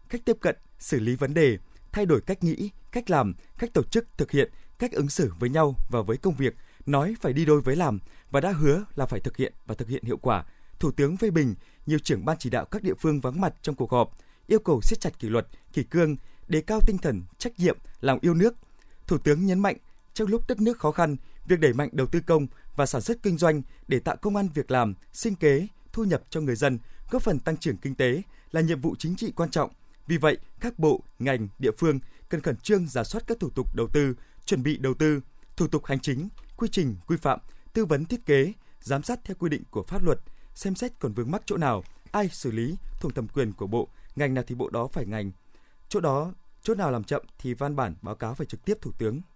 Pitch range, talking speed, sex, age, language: 130-185 Hz, 250 wpm, male, 20-39, Vietnamese